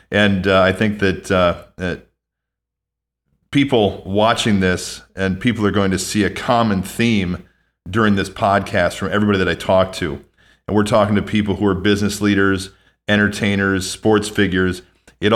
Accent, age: American, 40-59